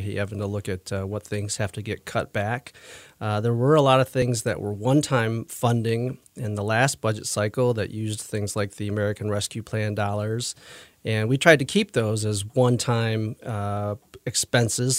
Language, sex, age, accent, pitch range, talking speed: English, male, 40-59, American, 105-120 Hz, 190 wpm